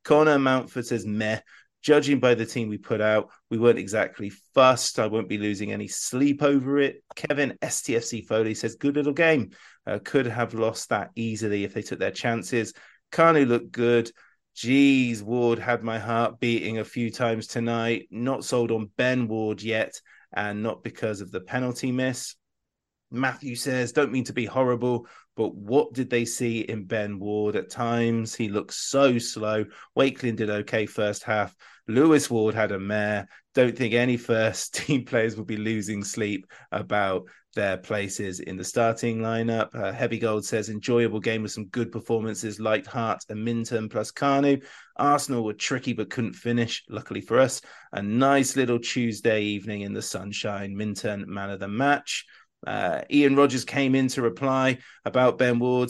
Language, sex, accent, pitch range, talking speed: English, male, British, 110-130 Hz, 175 wpm